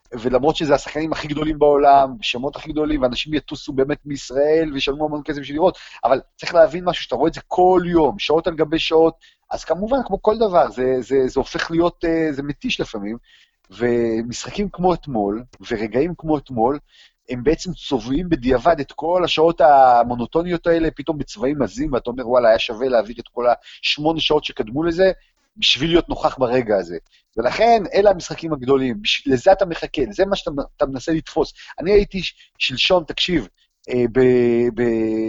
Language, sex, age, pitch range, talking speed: Hebrew, male, 30-49, 125-165 Hz, 170 wpm